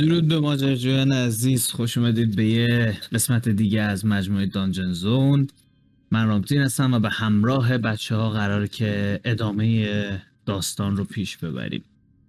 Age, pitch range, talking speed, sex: 30-49, 105-130 Hz, 145 wpm, male